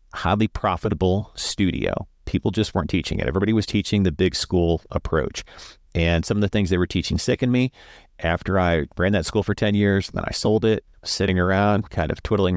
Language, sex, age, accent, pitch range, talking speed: English, male, 40-59, American, 80-105 Hz, 200 wpm